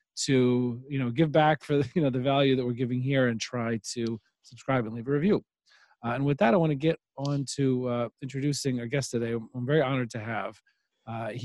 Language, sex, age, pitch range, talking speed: English, male, 40-59, 125-150 Hz, 215 wpm